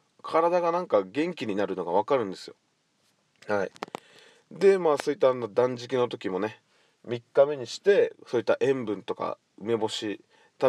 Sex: male